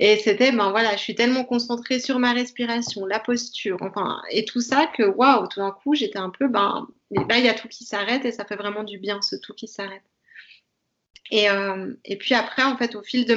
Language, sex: French, female